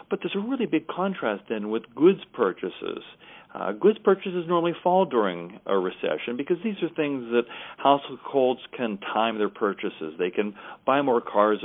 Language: English